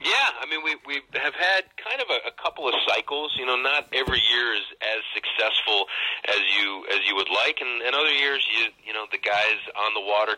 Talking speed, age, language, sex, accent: 230 wpm, 40-59, English, male, American